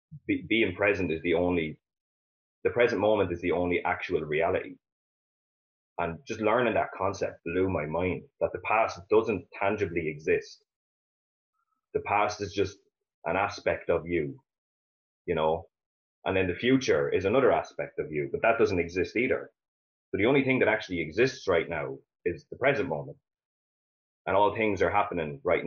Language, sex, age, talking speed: English, male, 20-39, 165 wpm